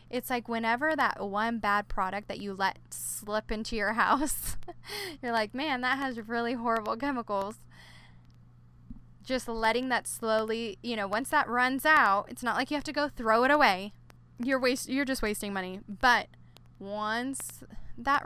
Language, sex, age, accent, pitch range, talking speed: English, female, 10-29, American, 195-240 Hz, 170 wpm